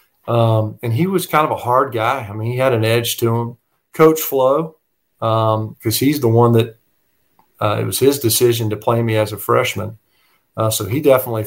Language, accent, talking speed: English, American, 210 wpm